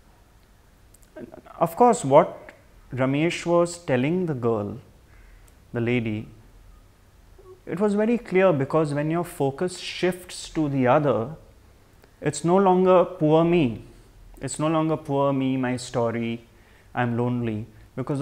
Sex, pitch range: male, 110-170 Hz